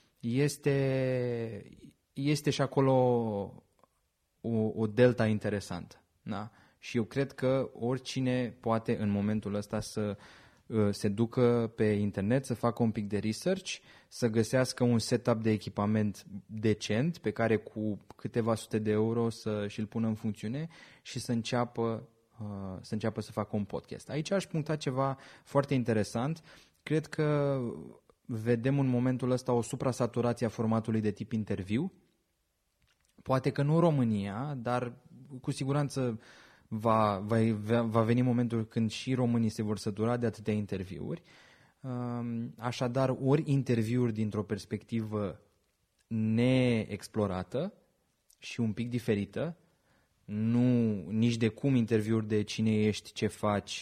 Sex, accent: male, native